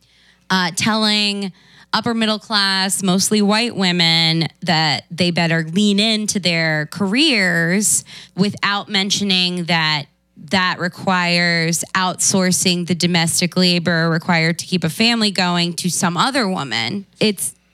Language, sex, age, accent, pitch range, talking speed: English, female, 20-39, American, 170-205 Hz, 120 wpm